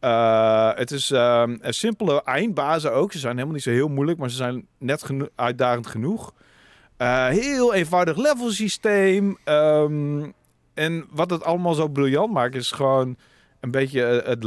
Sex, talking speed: male, 165 wpm